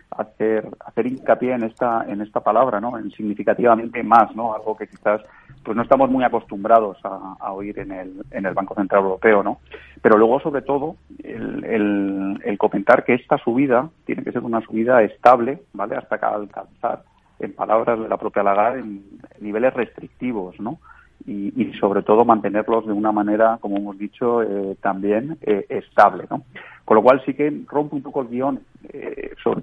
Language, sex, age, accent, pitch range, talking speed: Spanish, male, 40-59, Spanish, 100-115 Hz, 180 wpm